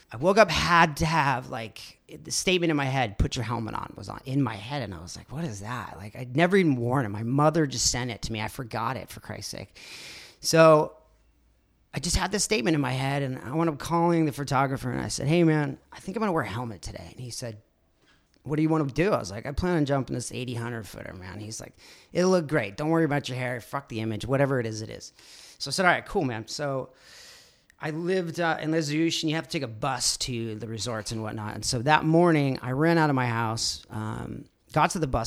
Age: 30-49